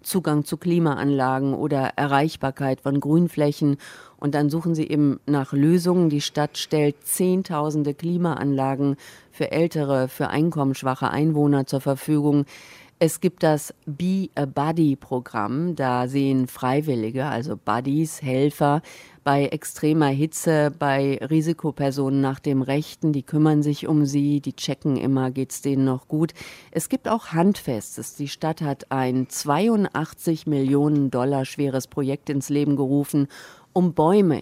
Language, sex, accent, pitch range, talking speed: German, female, German, 135-160 Hz, 130 wpm